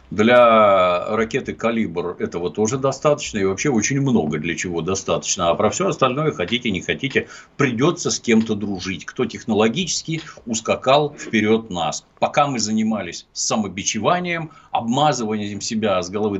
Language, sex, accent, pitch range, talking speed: Russian, male, native, 90-135 Hz, 135 wpm